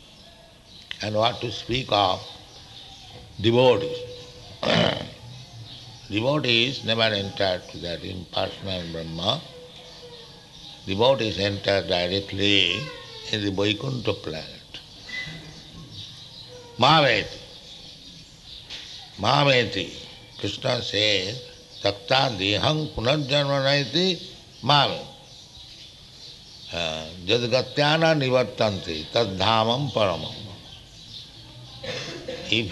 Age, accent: 60-79, Indian